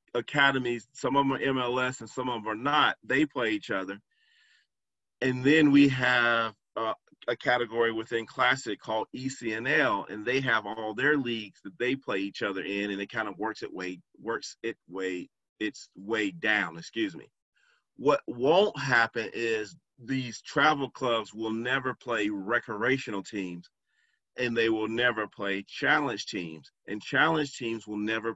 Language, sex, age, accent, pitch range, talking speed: English, male, 40-59, American, 105-135 Hz, 165 wpm